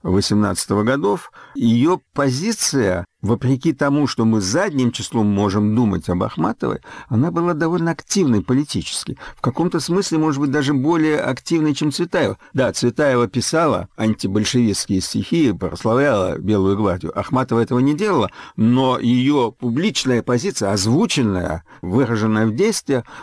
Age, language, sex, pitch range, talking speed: 60-79, Russian, male, 105-150 Hz, 125 wpm